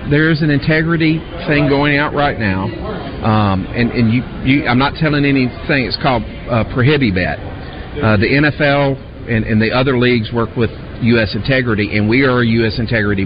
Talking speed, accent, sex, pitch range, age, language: 175 wpm, American, male, 100-120 Hz, 40-59, English